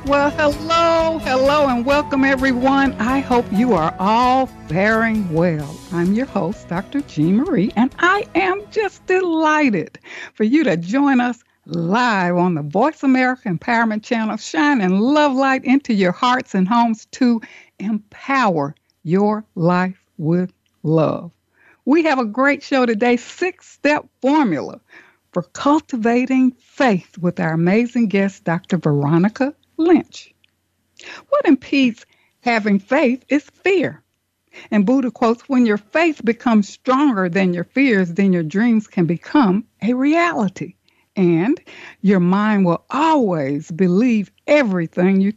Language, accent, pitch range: English, American, 190-280 Hz